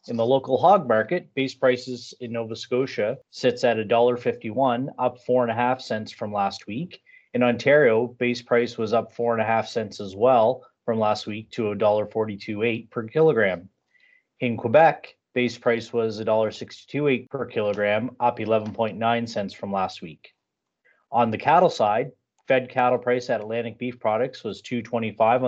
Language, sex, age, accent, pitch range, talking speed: English, male, 30-49, American, 110-125 Hz, 150 wpm